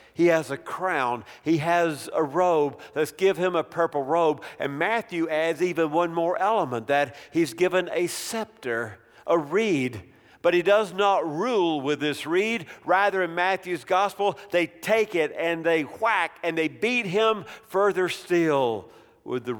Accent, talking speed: American, 165 wpm